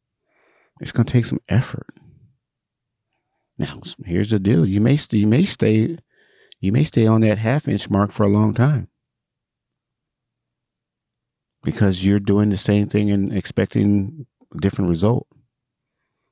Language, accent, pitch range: English, American, 100-125 Hz